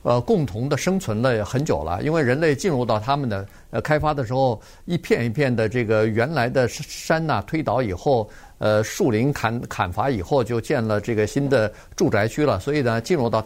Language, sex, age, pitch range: Chinese, male, 50-69, 110-145 Hz